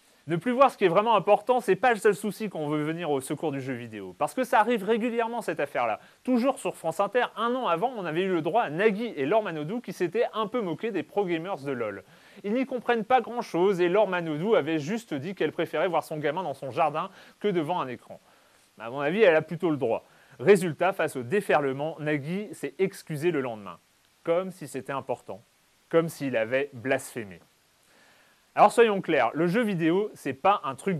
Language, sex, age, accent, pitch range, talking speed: French, male, 30-49, French, 145-210 Hz, 220 wpm